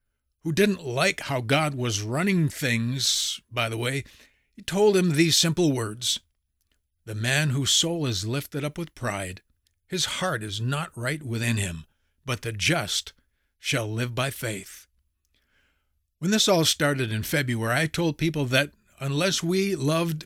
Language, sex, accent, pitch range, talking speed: English, male, American, 115-155 Hz, 155 wpm